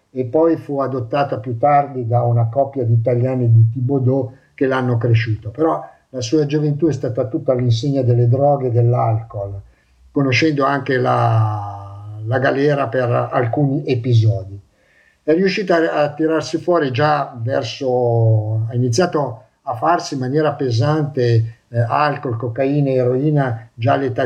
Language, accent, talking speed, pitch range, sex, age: Italian, native, 145 wpm, 120-150 Hz, male, 50-69